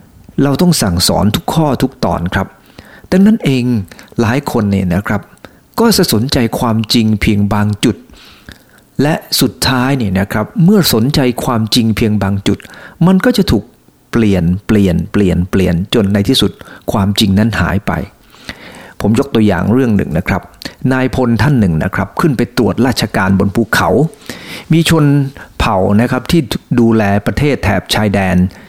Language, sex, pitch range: English, male, 100-130 Hz